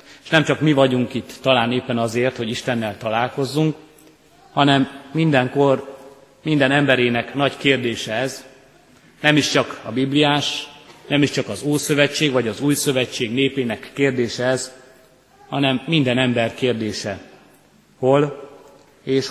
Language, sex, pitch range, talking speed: Hungarian, male, 125-145 Hz, 130 wpm